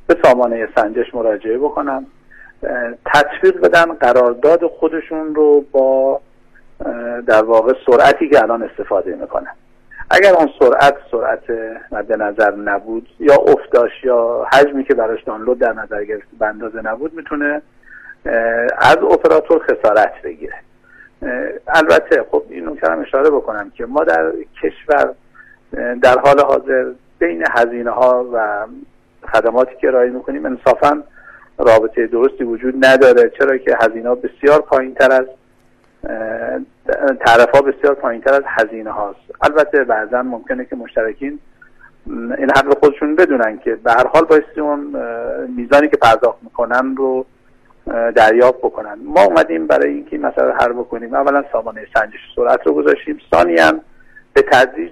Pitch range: 115-160 Hz